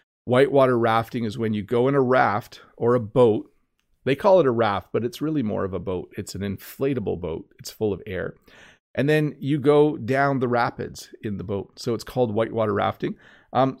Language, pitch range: English, 105-130 Hz